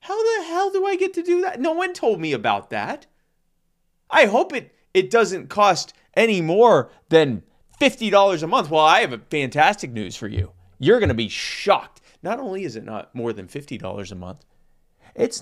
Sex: male